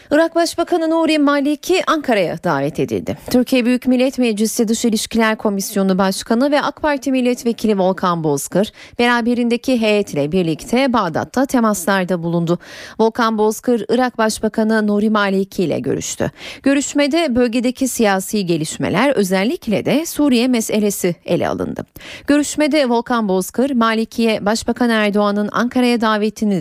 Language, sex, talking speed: Turkish, female, 120 wpm